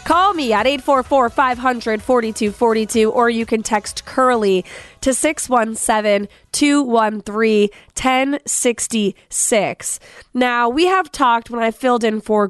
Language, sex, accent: English, female, American